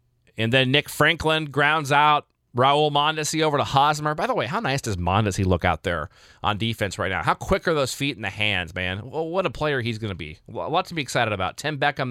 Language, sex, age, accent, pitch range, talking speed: English, male, 30-49, American, 115-155 Hz, 245 wpm